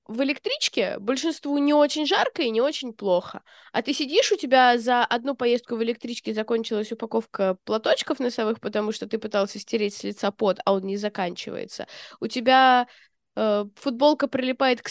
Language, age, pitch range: Russian, 20-39, 225-310 Hz